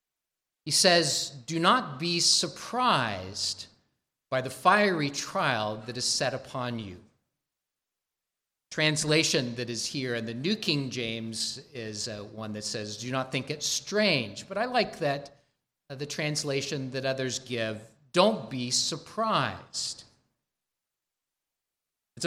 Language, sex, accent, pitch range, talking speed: English, male, American, 125-175 Hz, 125 wpm